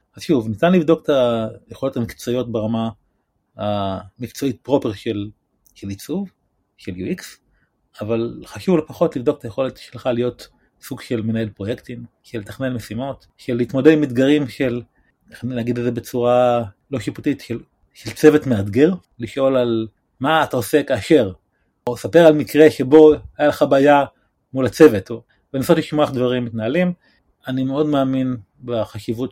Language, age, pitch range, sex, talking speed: Hebrew, 30-49, 115-135 Hz, male, 145 wpm